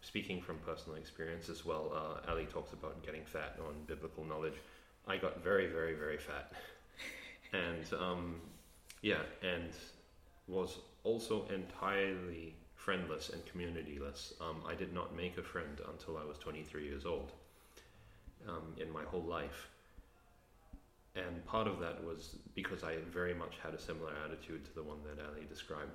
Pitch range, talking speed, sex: 80-90 Hz, 155 wpm, male